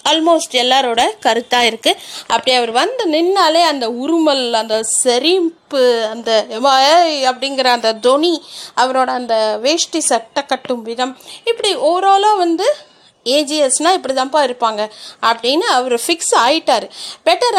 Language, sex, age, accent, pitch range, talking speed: Tamil, female, 30-49, native, 245-315 Hz, 115 wpm